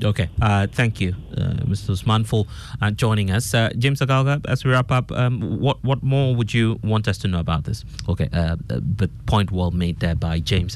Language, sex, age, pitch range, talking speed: English, male, 30-49, 90-115 Hz, 220 wpm